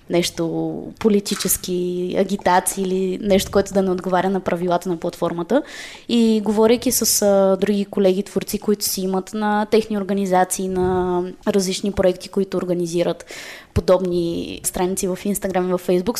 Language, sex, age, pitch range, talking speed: Bulgarian, female, 20-39, 185-220 Hz, 140 wpm